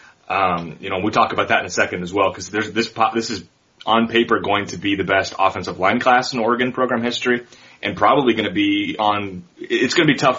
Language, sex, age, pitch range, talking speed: English, male, 30-49, 95-120 Hz, 235 wpm